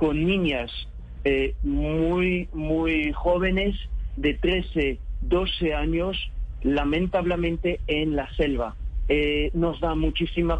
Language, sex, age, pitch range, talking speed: Spanish, male, 50-69, 145-175 Hz, 100 wpm